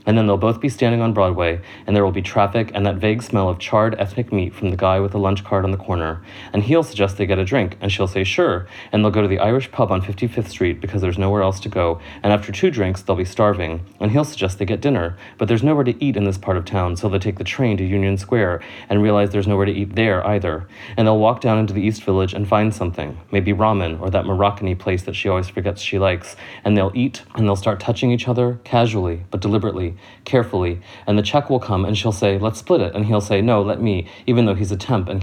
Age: 30-49